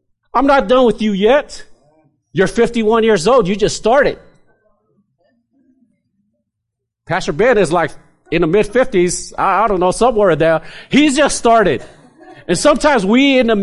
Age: 40-59